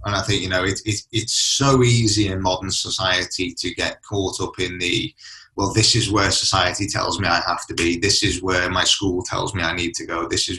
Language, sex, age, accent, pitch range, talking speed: English, male, 20-39, British, 95-115 Hz, 245 wpm